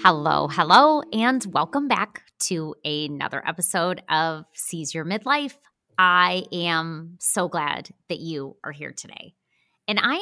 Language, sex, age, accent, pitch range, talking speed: English, female, 30-49, American, 175-255 Hz, 135 wpm